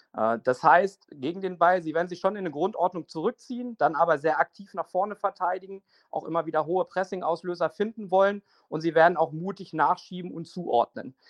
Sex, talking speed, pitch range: male, 185 wpm, 160-200 Hz